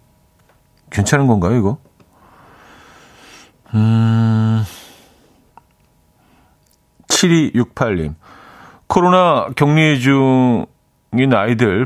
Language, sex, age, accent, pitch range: Korean, male, 40-59, native, 95-140 Hz